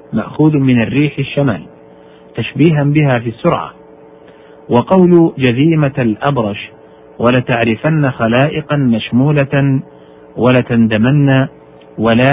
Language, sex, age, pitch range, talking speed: Arabic, male, 50-69, 105-145 Hz, 80 wpm